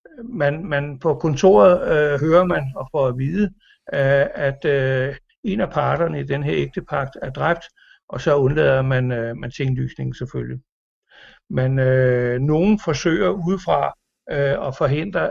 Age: 60-79